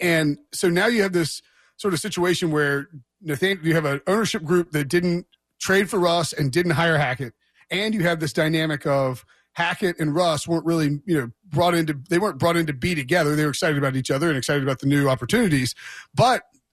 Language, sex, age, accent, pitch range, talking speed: English, male, 30-49, American, 145-180 Hz, 210 wpm